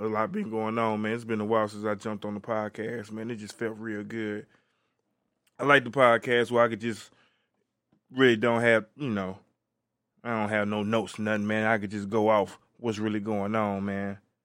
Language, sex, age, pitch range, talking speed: English, male, 20-39, 105-120 Hz, 215 wpm